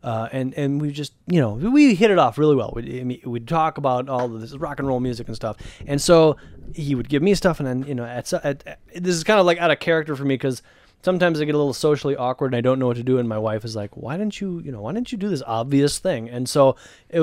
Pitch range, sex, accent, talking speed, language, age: 130-180 Hz, male, American, 280 wpm, English, 20-39